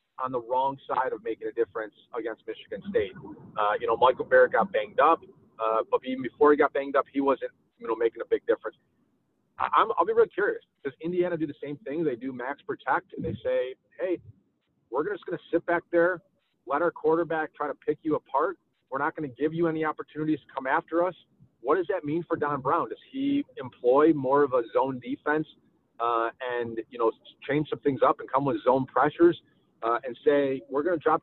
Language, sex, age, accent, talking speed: English, male, 30-49, American, 225 wpm